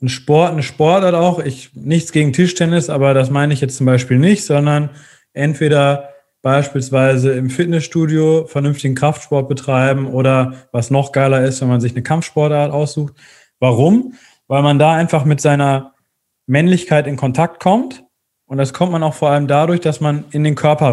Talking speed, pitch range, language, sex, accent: 170 wpm, 130-155 Hz, German, male, German